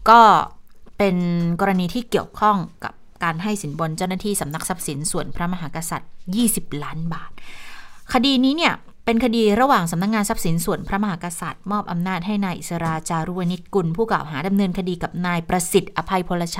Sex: female